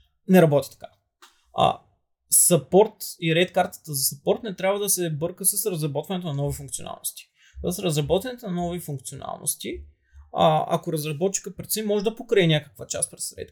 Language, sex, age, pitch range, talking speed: Bulgarian, male, 20-39, 150-195 Hz, 155 wpm